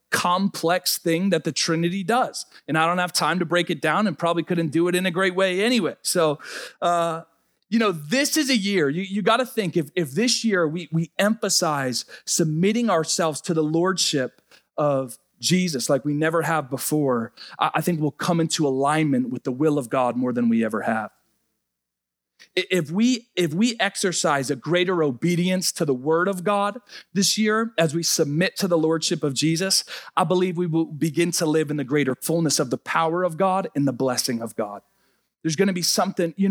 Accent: American